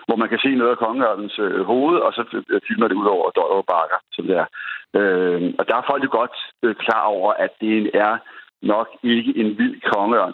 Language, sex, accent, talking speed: Danish, male, native, 215 wpm